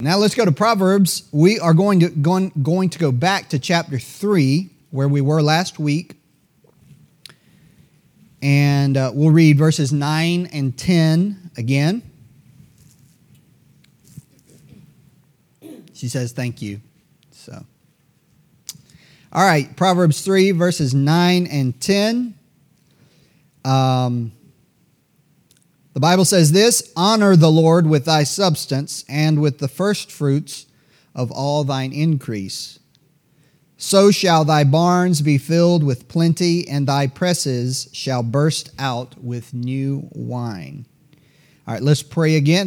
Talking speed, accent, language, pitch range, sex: 120 wpm, American, English, 140-165 Hz, male